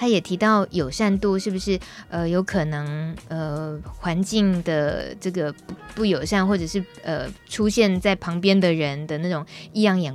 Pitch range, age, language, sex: 165-210 Hz, 20-39, Chinese, female